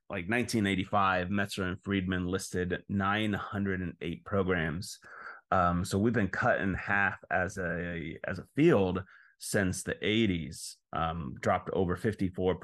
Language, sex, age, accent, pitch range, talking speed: English, male, 30-49, American, 90-105 Hz, 130 wpm